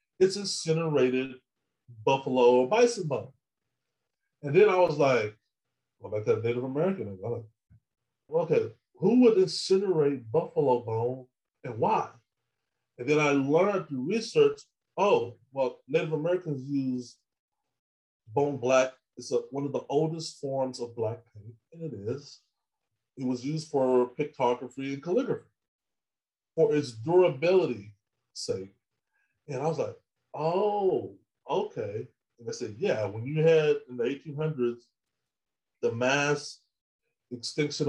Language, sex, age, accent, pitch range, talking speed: English, male, 30-49, American, 115-160 Hz, 130 wpm